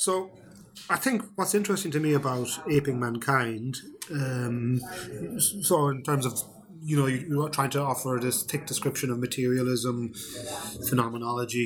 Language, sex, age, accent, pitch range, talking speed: English, male, 30-49, British, 125-150 Hz, 140 wpm